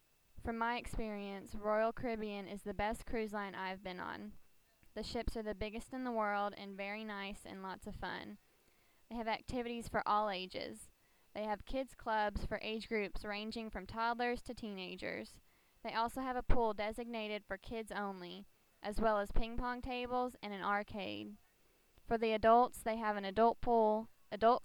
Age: 10-29